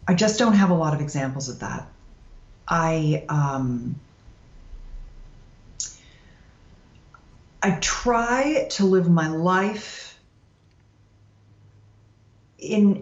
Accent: American